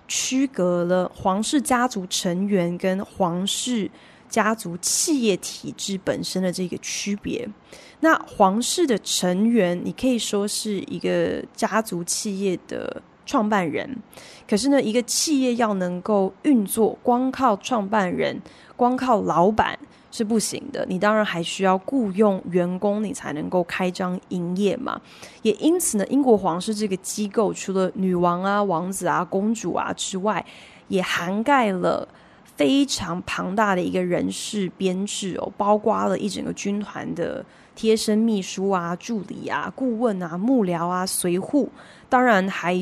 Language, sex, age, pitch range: Chinese, female, 20-39, 180-225 Hz